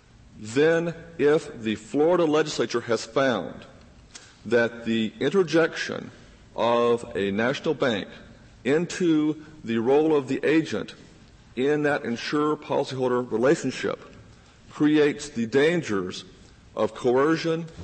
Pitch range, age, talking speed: 115-150 Hz, 50-69, 100 wpm